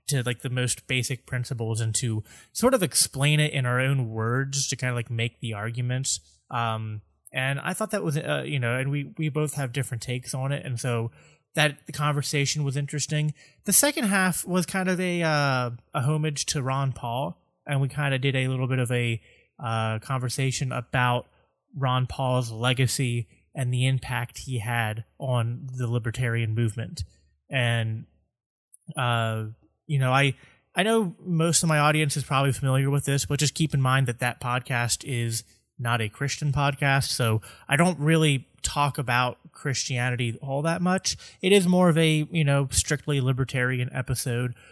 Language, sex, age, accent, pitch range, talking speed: English, male, 20-39, American, 120-145 Hz, 180 wpm